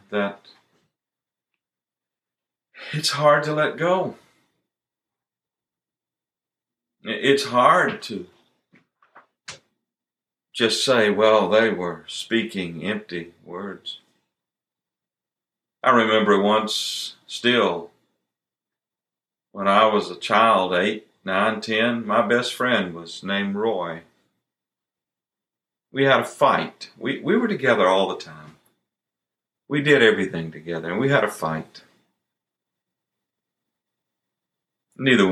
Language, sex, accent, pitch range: English, male, American, 90-120 Hz